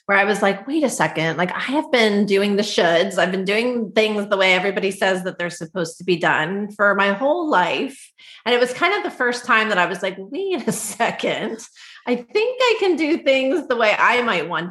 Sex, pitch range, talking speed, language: female, 180-225 Hz, 235 wpm, English